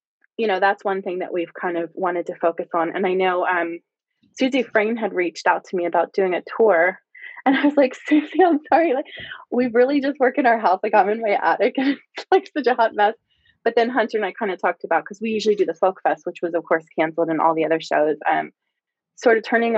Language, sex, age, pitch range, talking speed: English, female, 20-39, 180-240 Hz, 260 wpm